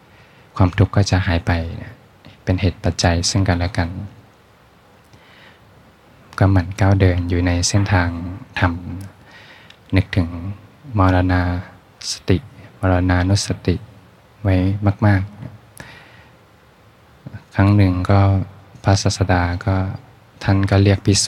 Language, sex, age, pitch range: Thai, male, 20-39, 90-105 Hz